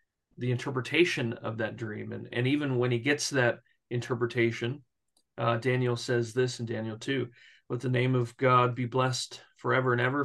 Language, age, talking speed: English, 40-59, 175 wpm